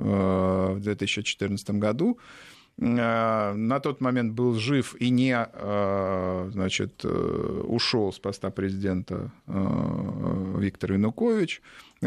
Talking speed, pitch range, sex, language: 85 wpm, 100-130 Hz, male, Russian